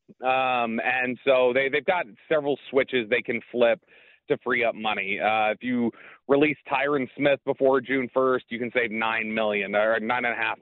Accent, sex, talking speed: American, male, 190 wpm